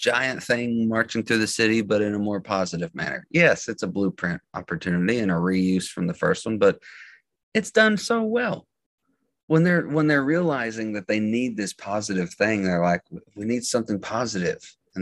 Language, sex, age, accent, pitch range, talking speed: English, male, 30-49, American, 95-120 Hz, 190 wpm